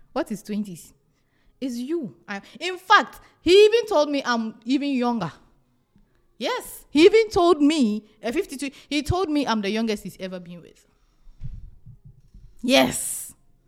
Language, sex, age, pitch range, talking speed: English, female, 20-39, 200-325 Hz, 140 wpm